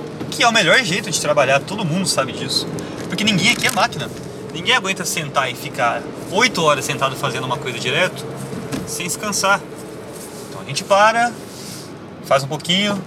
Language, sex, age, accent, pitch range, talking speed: Portuguese, male, 30-49, Brazilian, 150-205 Hz, 170 wpm